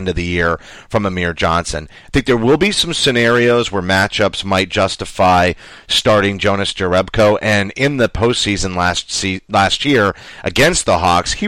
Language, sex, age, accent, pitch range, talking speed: English, male, 30-49, American, 95-115 Hz, 160 wpm